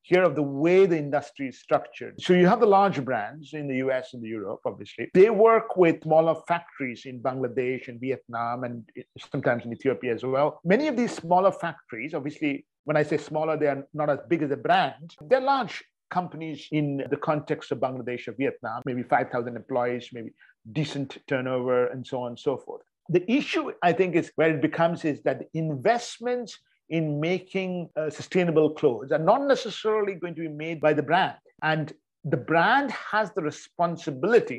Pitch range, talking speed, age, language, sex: 135-175 Hz, 185 wpm, 50-69, English, male